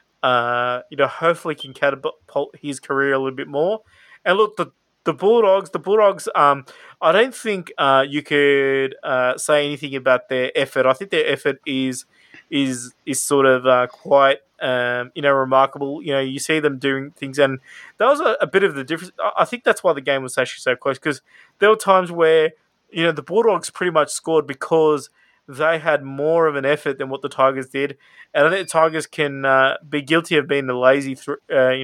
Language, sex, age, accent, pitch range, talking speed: English, male, 20-39, Australian, 135-160 Hz, 215 wpm